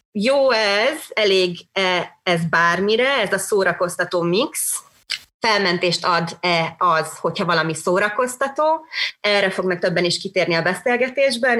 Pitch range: 165-200 Hz